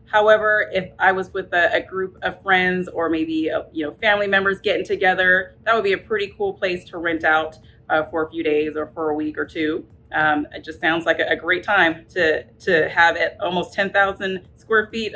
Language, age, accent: English, 30-49, American